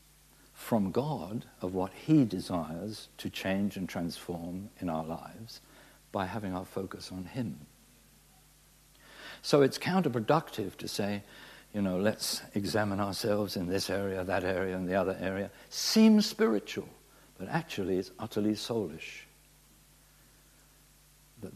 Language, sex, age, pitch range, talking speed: English, male, 60-79, 95-125 Hz, 130 wpm